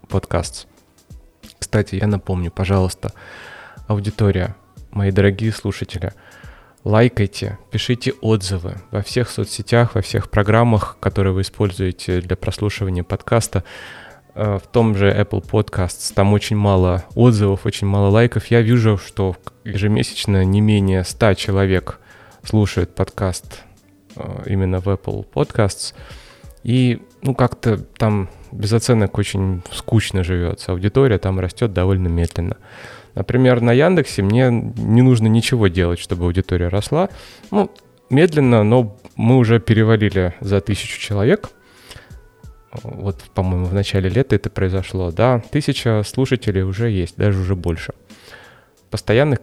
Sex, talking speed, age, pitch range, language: male, 120 wpm, 20-39, 95-115 Hz, Russian